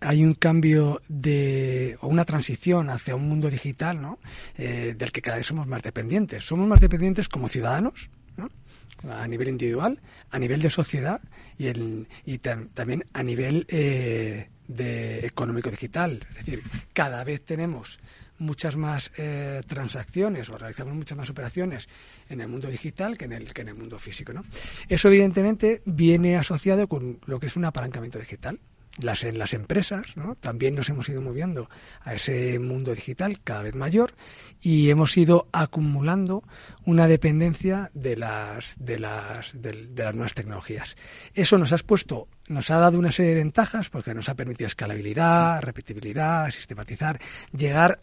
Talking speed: 165 wpm